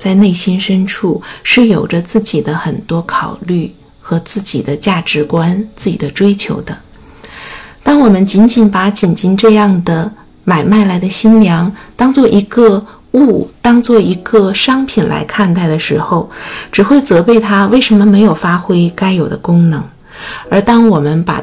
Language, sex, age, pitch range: Chinese, female, 50-69, 170-215 Hz